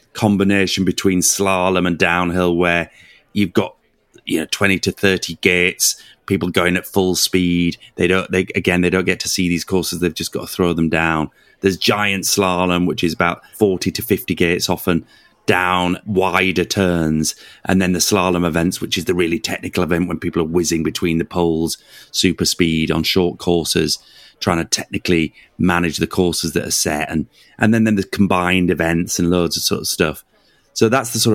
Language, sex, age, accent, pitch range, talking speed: English, male, 30-49, British, 85-100 Hz, 190 wpm